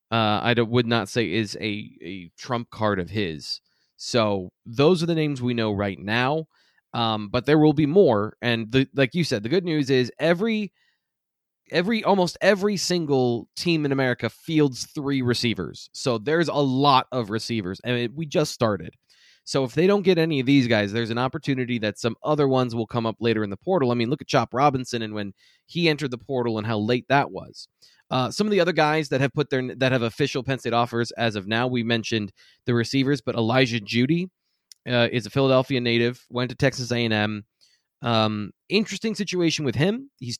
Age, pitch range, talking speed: 20-39, 115-155 Hz, 200 wpm